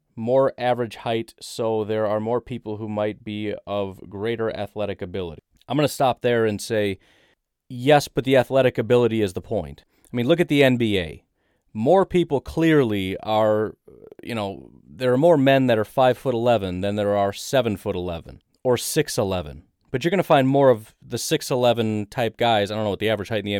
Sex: male